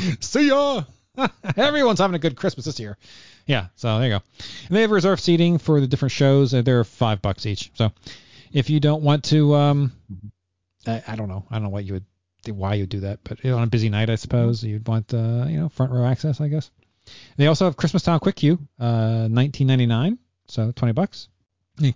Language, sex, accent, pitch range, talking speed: English, male, American, 110-165 Hz, 220 wpm